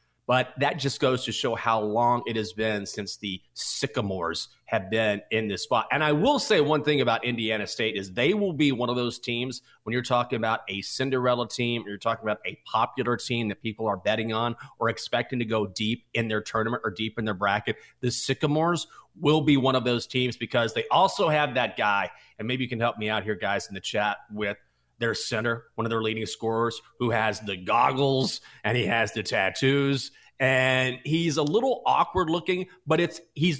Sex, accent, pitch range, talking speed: male, American, 110-150 Hz, 215 wpm